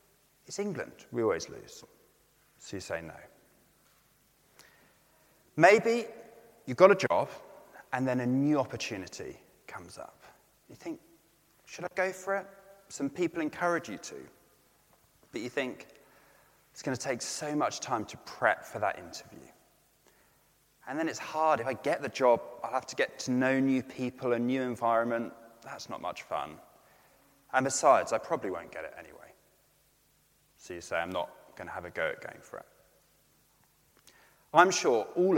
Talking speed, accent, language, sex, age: 165 wpm, British, English, male, 30-49